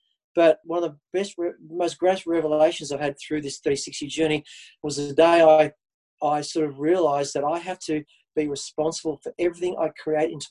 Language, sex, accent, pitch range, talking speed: English, male, Australian, 150-185 Hz, 190 wpm